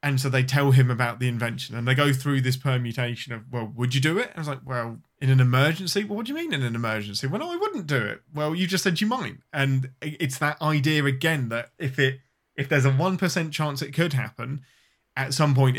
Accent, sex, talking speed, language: British, male, 255 wpm, English